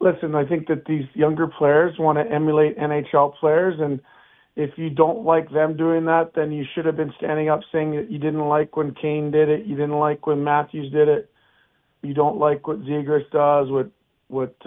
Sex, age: male, 40-59